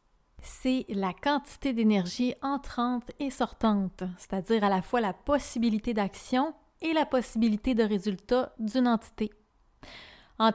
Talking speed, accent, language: 125 wpm, Canadian, French